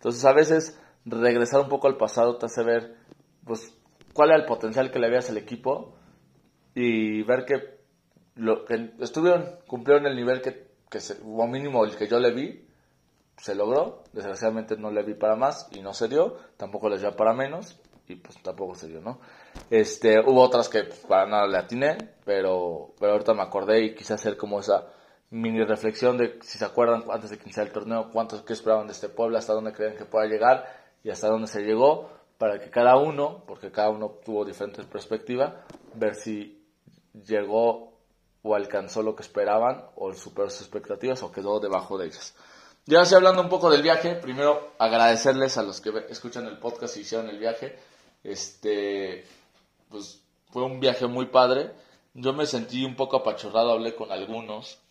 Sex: male